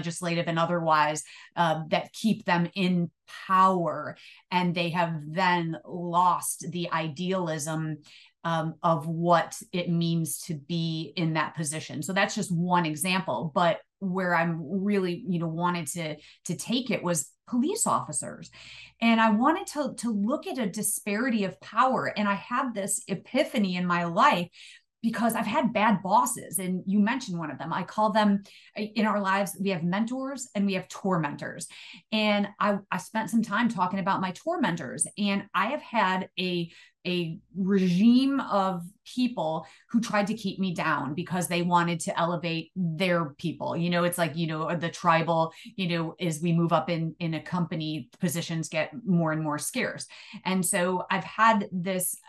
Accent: American